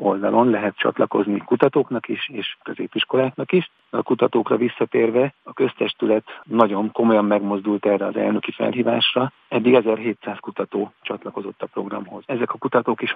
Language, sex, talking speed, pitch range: Hungarian, male, 135 wpm, 100-115 Hz